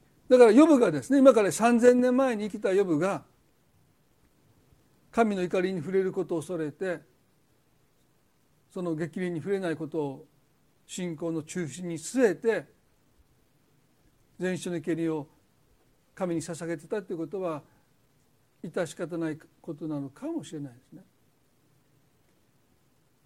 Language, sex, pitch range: Japanese, male, 145-200 Hz